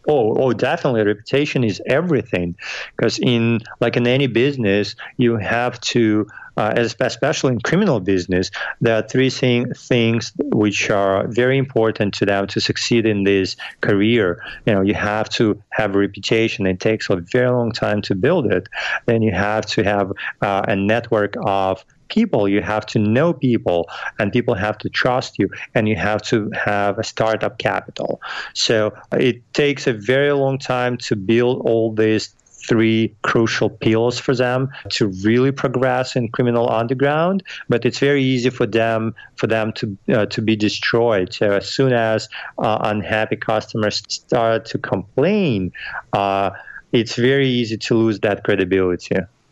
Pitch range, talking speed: 105-125 Hz, 165 wpm